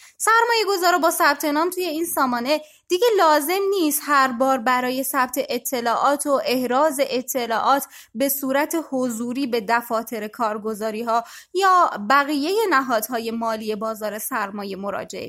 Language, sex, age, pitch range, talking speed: Persian, female, 20-39, 230-320 Hz, 120 wpm